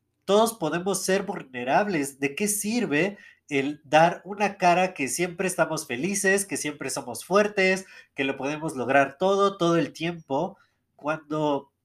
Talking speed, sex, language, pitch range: 140 wpm, male, Spanish, 125-175 Hz